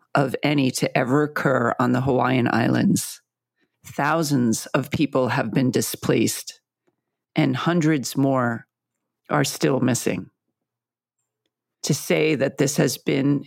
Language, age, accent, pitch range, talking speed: English, 40-59, American, 130-155 Hz, 120 wpm